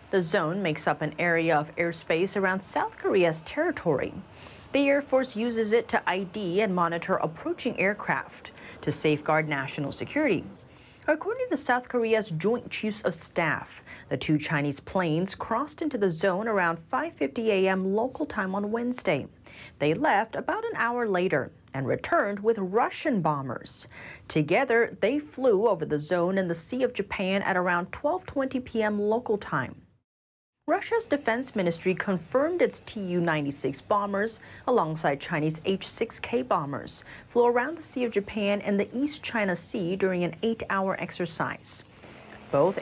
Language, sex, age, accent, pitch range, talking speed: English, female, 40-59, American, 165-240 Hz, 145 wpm